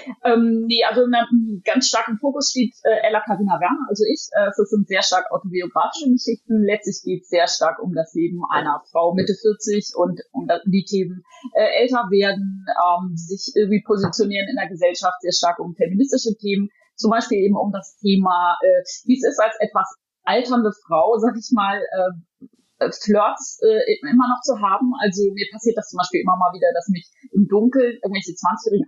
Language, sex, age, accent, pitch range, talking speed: German, female, 30-49, German, 185-235 Hz, 190 wpm